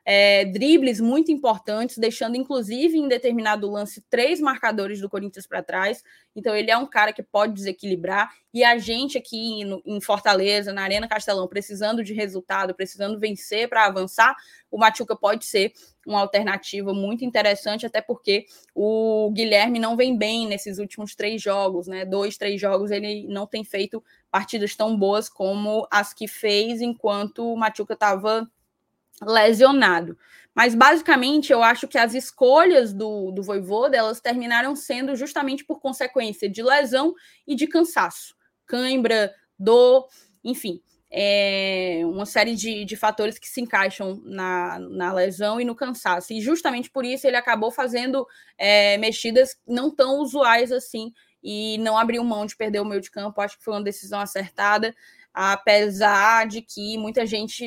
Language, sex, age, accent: Portuguese, female, 10-29, Brazilian